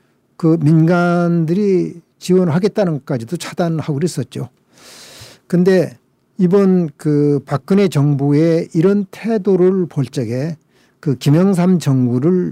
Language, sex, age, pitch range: Korean, male, 50-69, 140-180 Hz